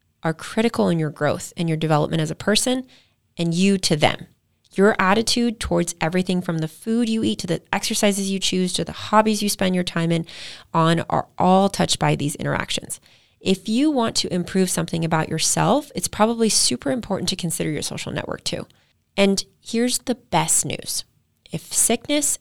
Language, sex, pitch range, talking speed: English, female, 160-205 Hz, 185 wpm